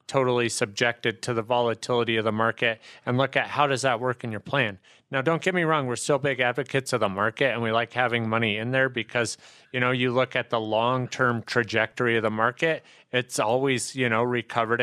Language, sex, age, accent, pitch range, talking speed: English, male, 30-49, American, 115-135 Hz, 220 wpm